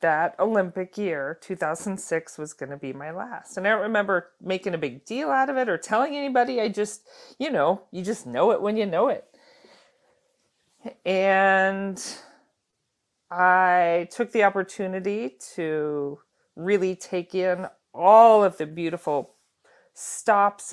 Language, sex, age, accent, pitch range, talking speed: English, female, 40-59, American, 170-210 Hz, 140 wpm